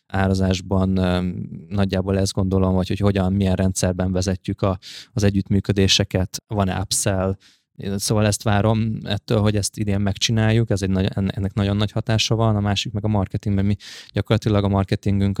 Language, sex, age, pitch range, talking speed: Hungarian, male, 20-39, 95-105 Hz, 155 wpm